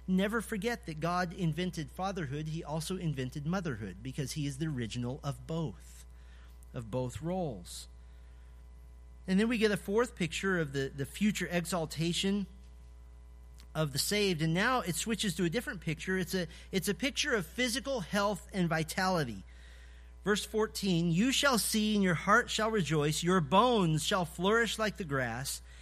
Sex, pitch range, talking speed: male, 135-205 Hz, 160 wpm